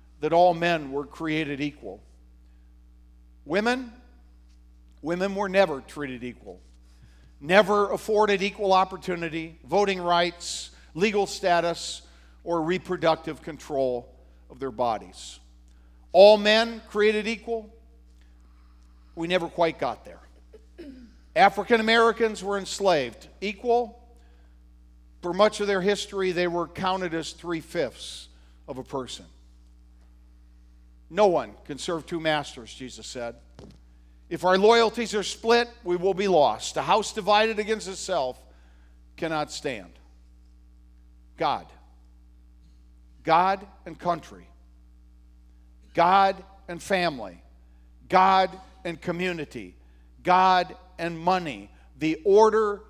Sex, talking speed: male, 105 wpm